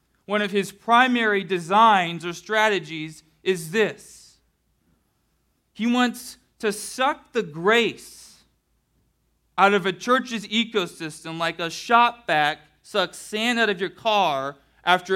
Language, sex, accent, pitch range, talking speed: English, male, American, 165-220 Hz, 125 wpm